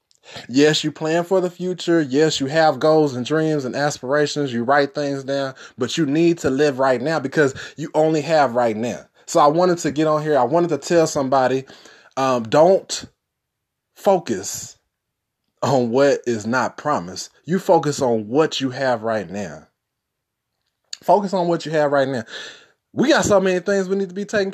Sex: male